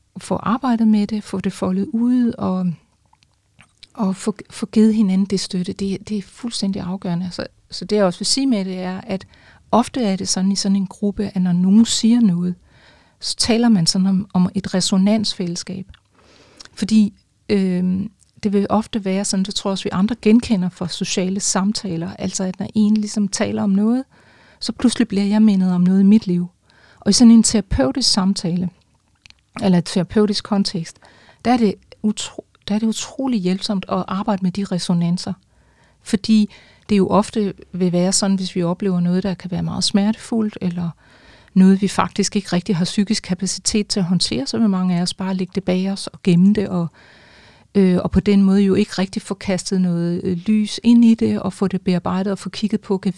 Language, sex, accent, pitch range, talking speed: Danish, female, native, 185-215 Hz, 195 wpm